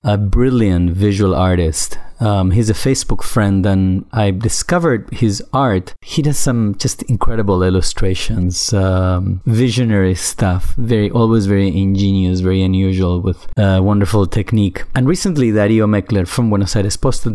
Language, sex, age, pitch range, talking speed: English, male, 30-49, 95-115 Hz, 140 wpm